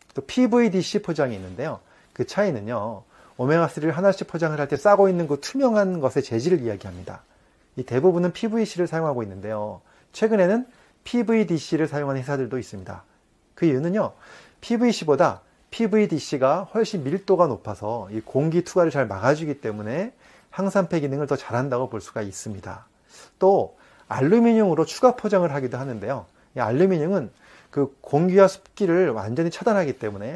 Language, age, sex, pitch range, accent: Korean, 30-49, male, 120-185 Hz, native